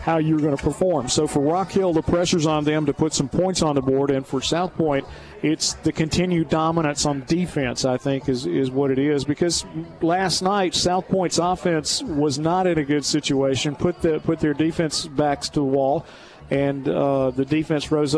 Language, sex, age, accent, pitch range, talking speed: English, male, 50-69, American, 135-160 Hz, 210 wpm